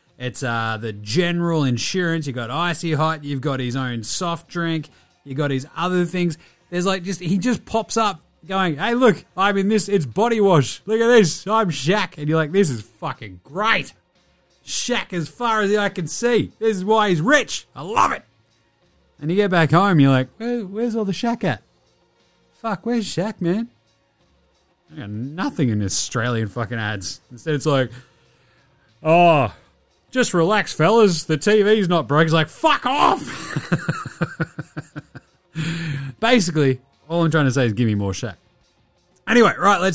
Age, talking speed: 30-49, 175 wpm